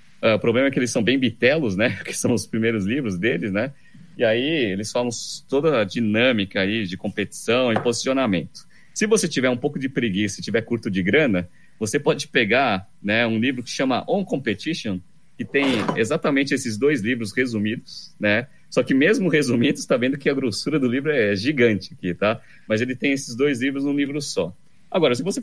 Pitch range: 105-140 Hz